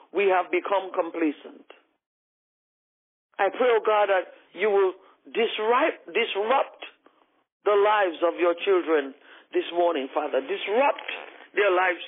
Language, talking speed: English, 115 wpm